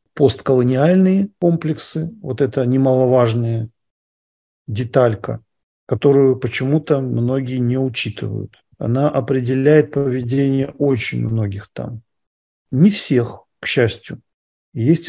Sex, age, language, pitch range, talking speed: male, 40-59, English, 115-145 Hz, 90 wpm